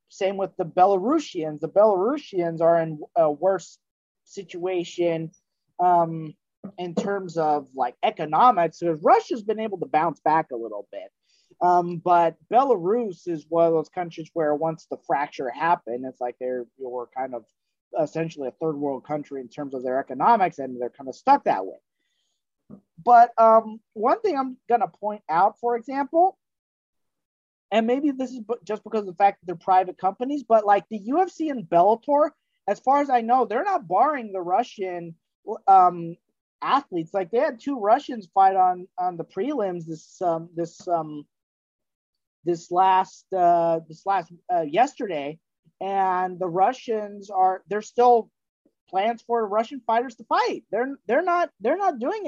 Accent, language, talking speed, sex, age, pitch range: American, English, 165 wpm, male, 30-49, 170-250 Hz